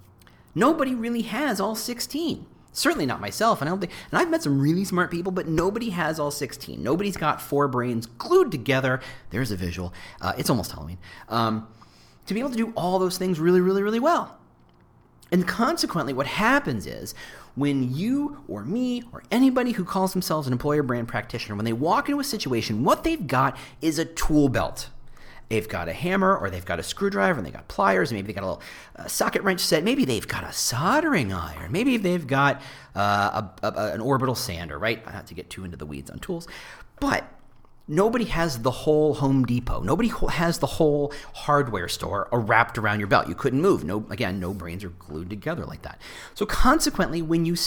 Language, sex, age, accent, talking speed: English, male, 40-59, American, 210 wpm